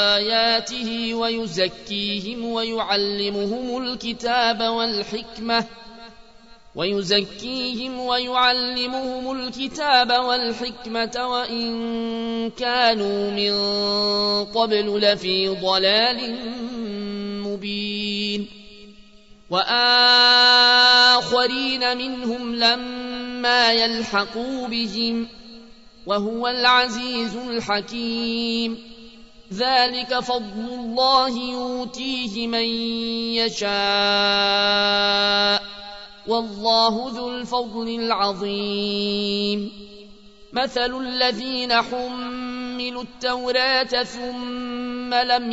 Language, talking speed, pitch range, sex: Arabic, 50 wpm, 210-245 Hz, male